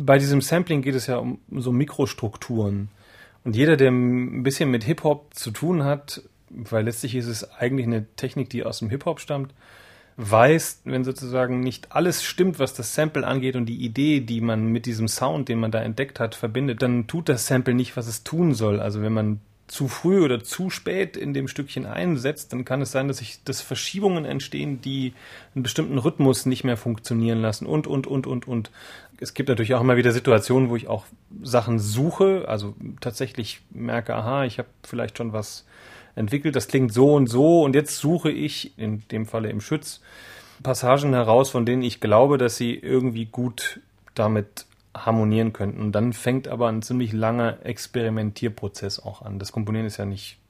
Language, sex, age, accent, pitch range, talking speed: German, male, 30-49, German, 110-135 Hz, 190 wpm